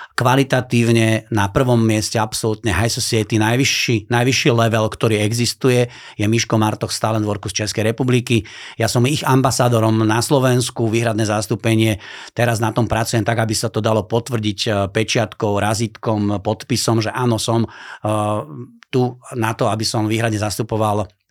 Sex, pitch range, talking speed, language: male, 110-125 Hz, 145 wpm, Slovak